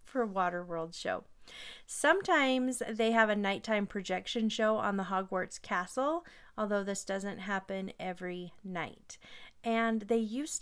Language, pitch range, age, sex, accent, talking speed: English, 195-225 Hz, 30-49, female, American, 130 wpm